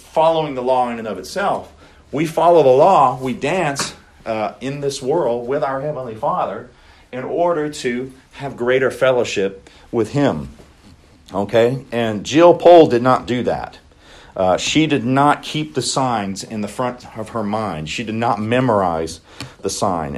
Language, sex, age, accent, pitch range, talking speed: English, male, 40-59, American, 100-135 Hz, 165 wpm